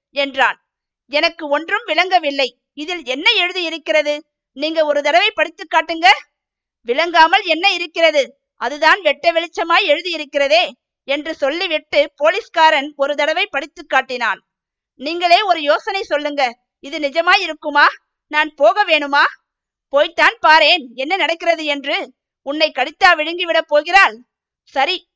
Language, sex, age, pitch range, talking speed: Tamil, female, 50-69, 285-345 Hz, 105 wpm